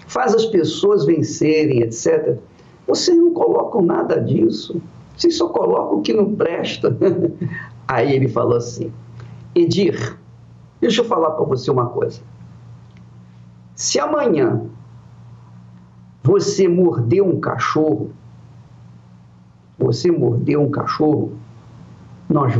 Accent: Brazilian